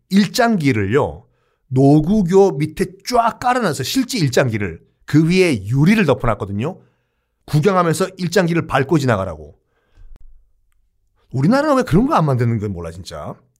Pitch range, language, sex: 125-195 Hz, Korean, male